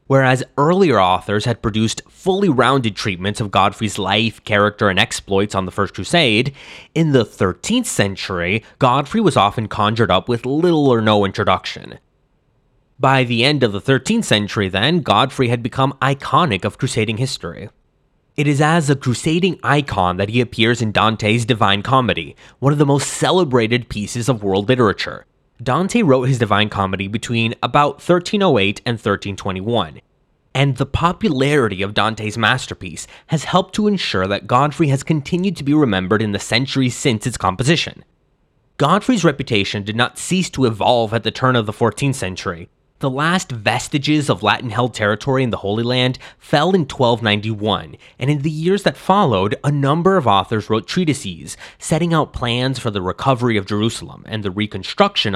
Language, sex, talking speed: English, male, 165 wpm